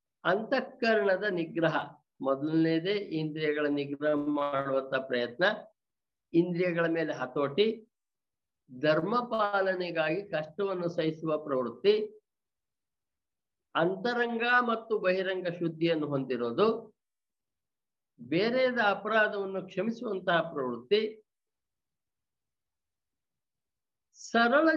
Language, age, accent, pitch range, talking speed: Kannada, 60-79, native, 150-220 Hz, 60 wpm